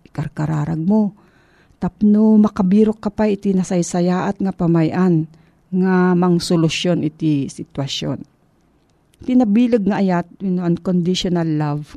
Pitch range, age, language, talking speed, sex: 160-210 Hz, 40-59, Filipino, 120 wpm, female